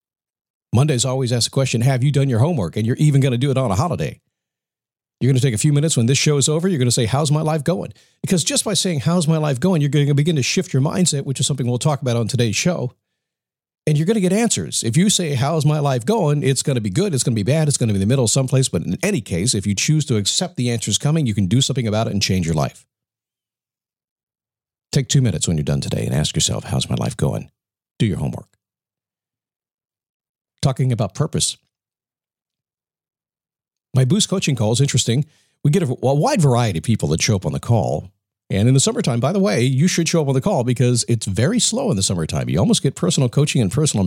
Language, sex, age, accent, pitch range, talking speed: English, male, 50-69, American, 115-150 Hz, 250 wpm